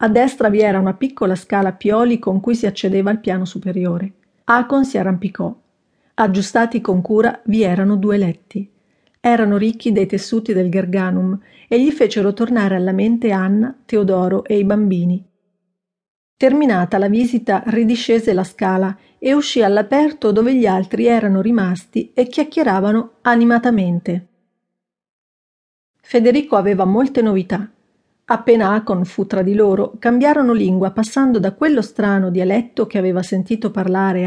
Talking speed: 140 wpm